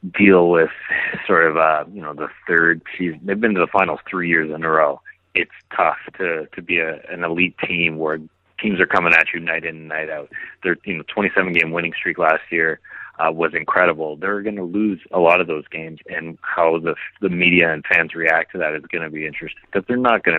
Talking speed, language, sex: 240 wpm, English, male